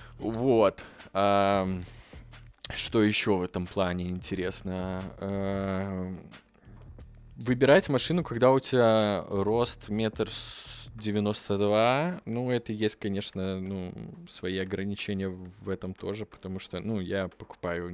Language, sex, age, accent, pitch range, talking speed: Russian, male, 20-39, native, 90-110 Hz, 105 wpm